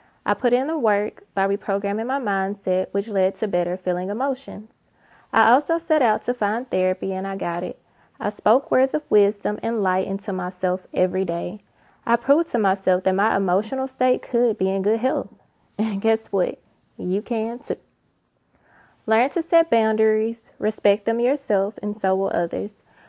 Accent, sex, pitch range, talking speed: American, female, 195-245 Hz, 175 wpm